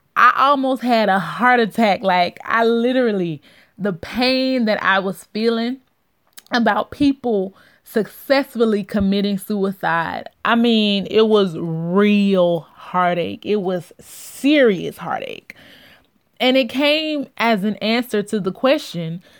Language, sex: English, female